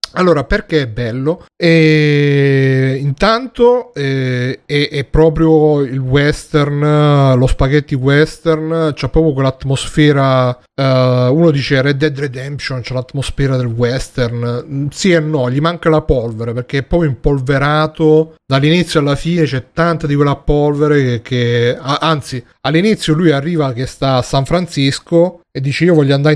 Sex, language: male, Italian